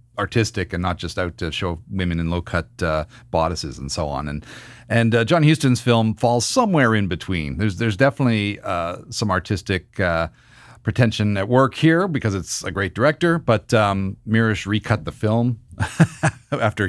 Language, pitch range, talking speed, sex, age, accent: English, 90-120 Hz, 175 wpm, male, 40-59, American